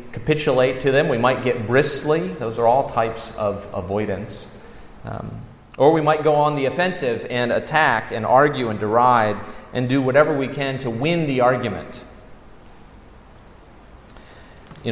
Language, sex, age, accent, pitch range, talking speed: English, male, 30-49, American, 100-125 Hz, 150 wpm